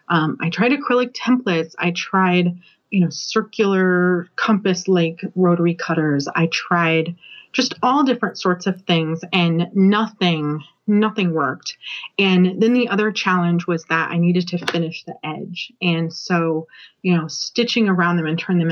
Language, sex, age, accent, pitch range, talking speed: English, female, 30-49, American, 165-200 Hz, 155 wpm